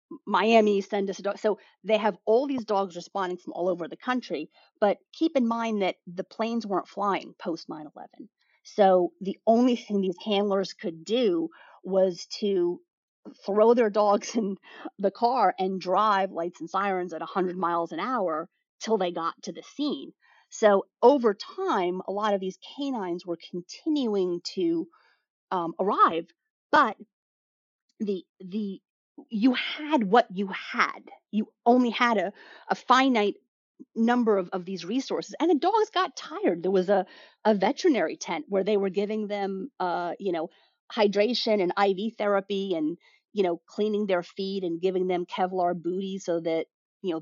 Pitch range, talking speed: 185-235 Hz, 170 wpm